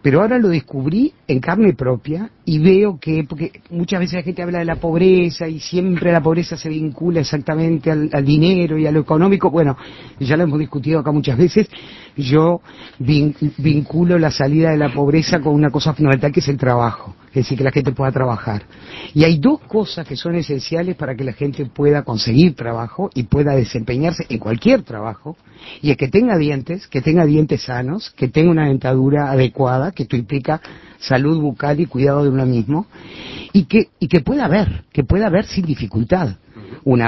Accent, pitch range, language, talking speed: Argentinian, 135-175 Hz, Spanish, 195 wpm